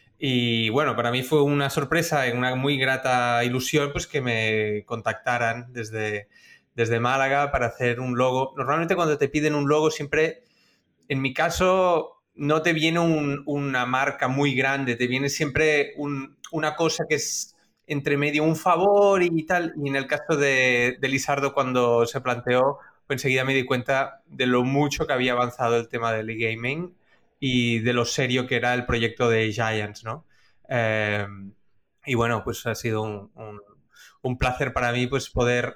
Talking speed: 175 wpm